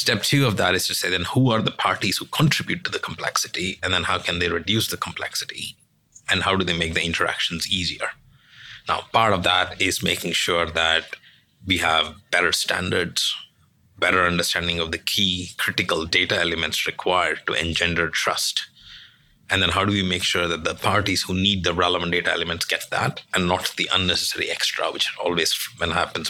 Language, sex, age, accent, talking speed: English, male, 30-49, Indian, 190 wpm